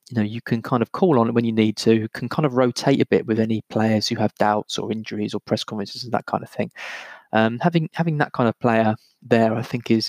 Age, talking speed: 20-39, 275 wpm